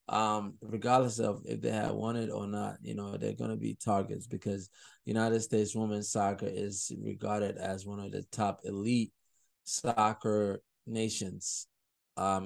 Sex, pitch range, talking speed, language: male, 95-115 Hz, 155 wpm, English